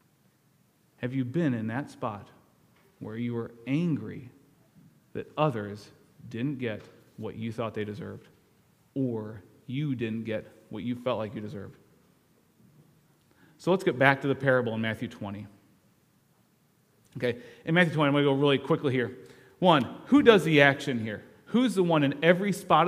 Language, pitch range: English, 130-180 Hz